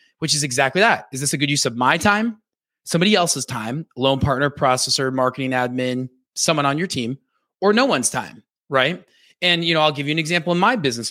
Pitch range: 125-160 Hz